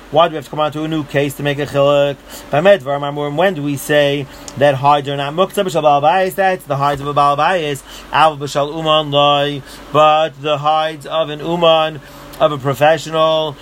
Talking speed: 175 wpm